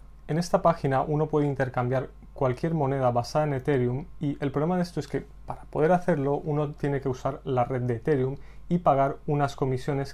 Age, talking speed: 30-49, 195 wpm